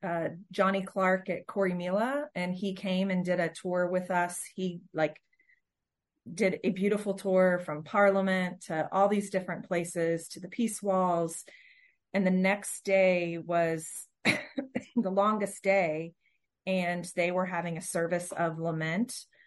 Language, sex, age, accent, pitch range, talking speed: English, female, 30-49, American, 165-195 Hz, 150 wpm